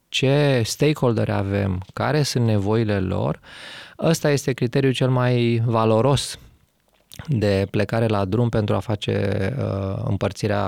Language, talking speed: English, 120 wpm